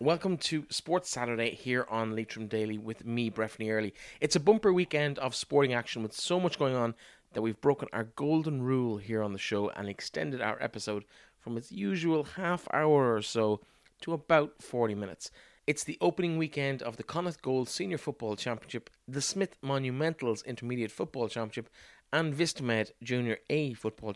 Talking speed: 175 wpm